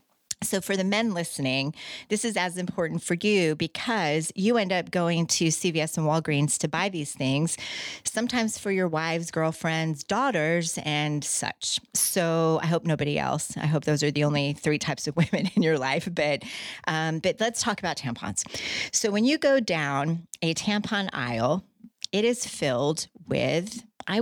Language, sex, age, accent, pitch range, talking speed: English, female, 30-49, American, 150-200 Hz, 175 wpm